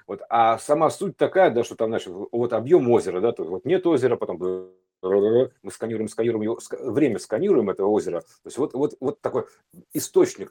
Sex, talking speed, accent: male, 190 wpm, native